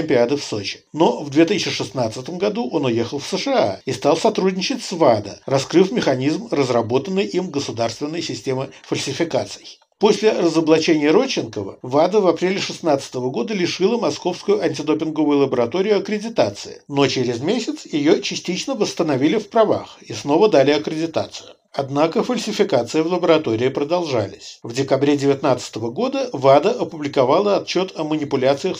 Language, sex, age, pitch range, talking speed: Russian, male, 60-79, 135-190 Hz, 125 wpm